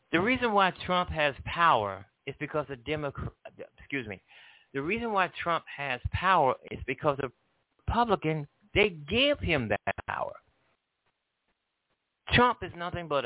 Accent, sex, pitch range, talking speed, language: American, male, 110-155 Hz, 130 wpm, English